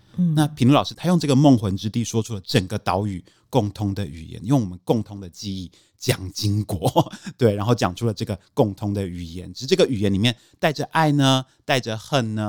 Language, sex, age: Chinese, male, 30-49